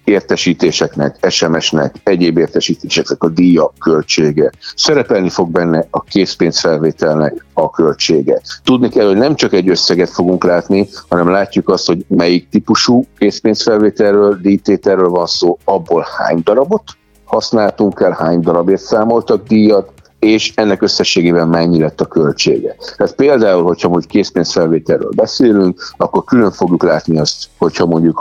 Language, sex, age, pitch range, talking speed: Hungarian, male, 50-69, 80-100 Hz, 130 wpm